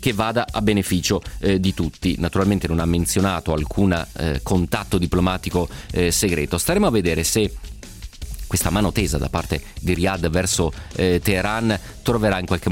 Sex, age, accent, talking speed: male, 30-49, native, 160 wpm